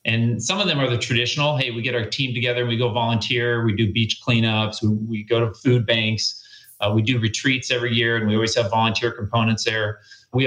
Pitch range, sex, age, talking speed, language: 110-130 Hz, male, 30-49, 230 wpm, English